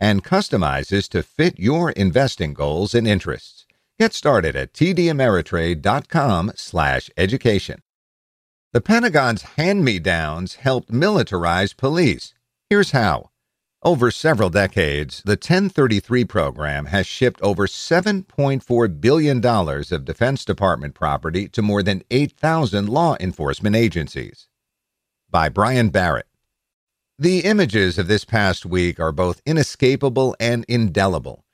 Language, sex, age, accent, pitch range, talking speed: English, male, 50-69, American, 90-130 Hz, 110 wpm